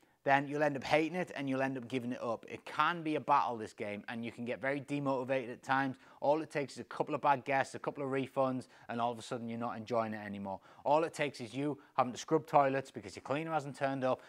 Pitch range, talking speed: 115-145 Hz, 275 wpm